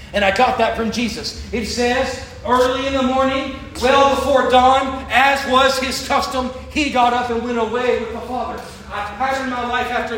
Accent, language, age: American, English, 30-49